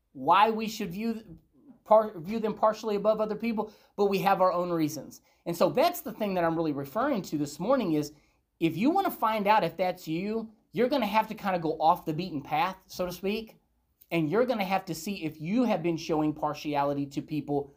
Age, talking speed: 30-49, 225 wpm